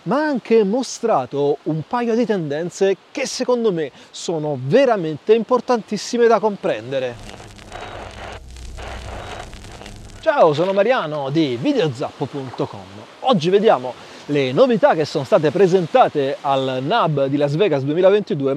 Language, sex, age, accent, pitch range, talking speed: Italian, male, 30-49, native, 145-235 Hz, 115 wpm